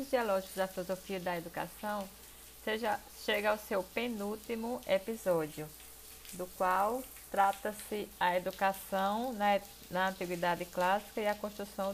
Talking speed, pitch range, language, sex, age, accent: 115 wpm, 185-225 Hz, Portuguese, female, 20-39, Brazilian